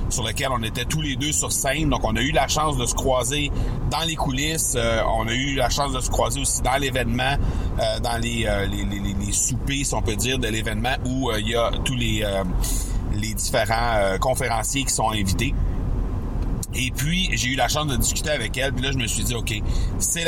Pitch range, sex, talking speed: 105-135 Hz, male, 235 wpm